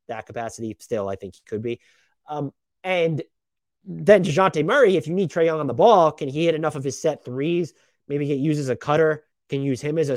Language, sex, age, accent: English, male, 30-49, American